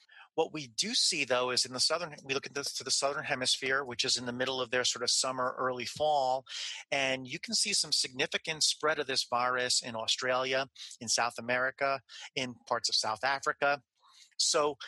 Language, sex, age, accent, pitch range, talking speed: English, male, 40-59, American, 125-155 Hz, 200 wpm